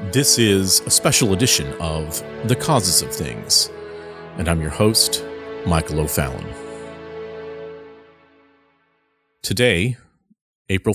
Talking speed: 100 wpm